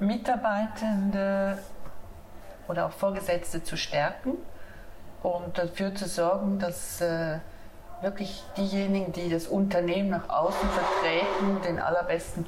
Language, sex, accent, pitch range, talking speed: German, female, German, 165-195 Hz, 105 wpm